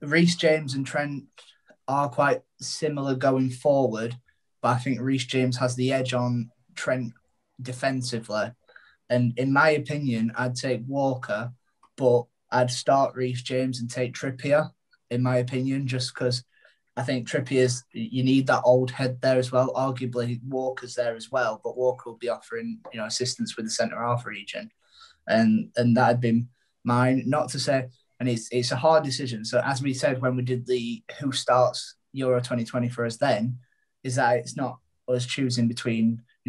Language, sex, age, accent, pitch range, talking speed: English, male, 20-39, British, 120-135 Hz, 175 wpm